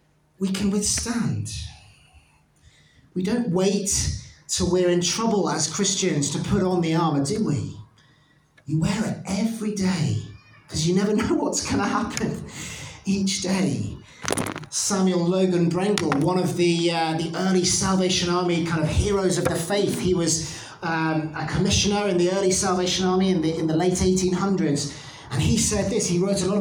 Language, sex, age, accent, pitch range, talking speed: English, male, 30-49, British, 155-195 Hz, 170 wpm